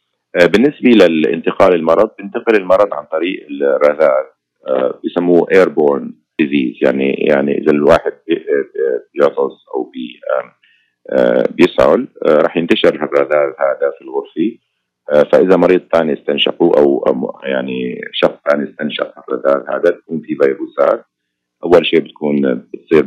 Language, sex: Arabic, male